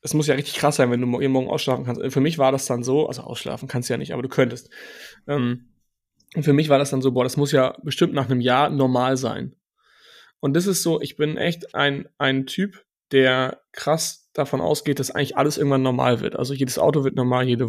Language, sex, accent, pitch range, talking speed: German, male, German, 125-145 Hz, 240 wpm